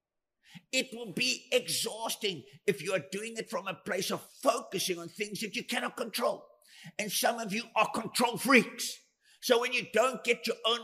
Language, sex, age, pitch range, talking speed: English, male, 50-69, 180-230 Hz, 190 wpm